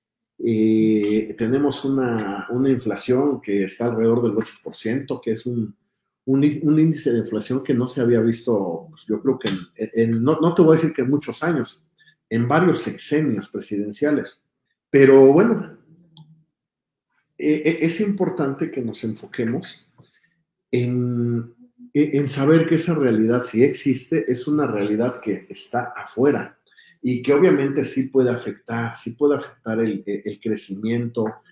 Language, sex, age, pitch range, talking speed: Spanish, male, 50-69, 115-150 Hz, 145 wpm